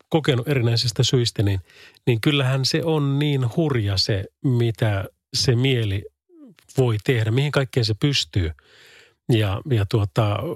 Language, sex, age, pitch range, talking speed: Finnish, male, 30-49, 110-150 Hz, 130 wpm